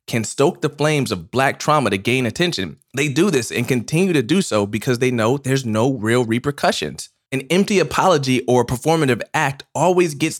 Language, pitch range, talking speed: English, 115-140 Hz, 190 wpm